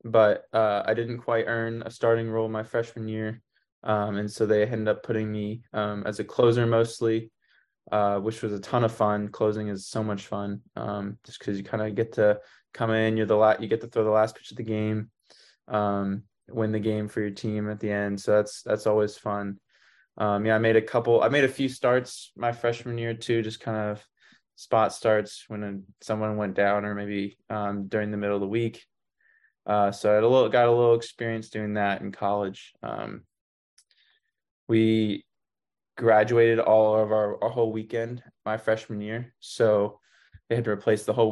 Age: 20-39